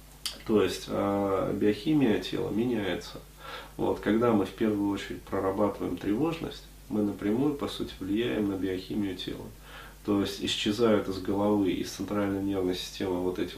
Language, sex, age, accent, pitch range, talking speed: Russian, male, 30-49, native, 95-105 Hz, 145 wpm